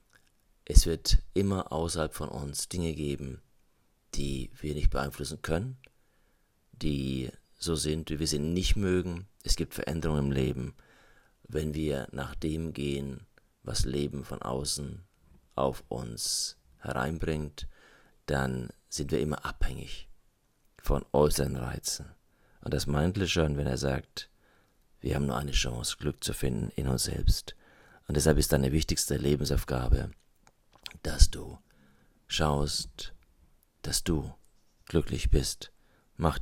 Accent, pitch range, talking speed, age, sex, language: German, 70-80 Hz, 130 wpm, 40-59, male, German